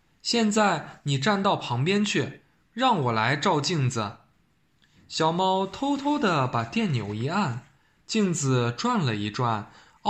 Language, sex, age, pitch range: Chinese, male, 20-39, 130-205 Hz